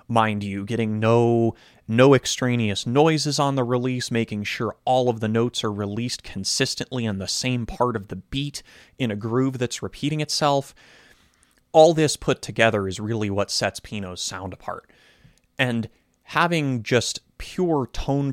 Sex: male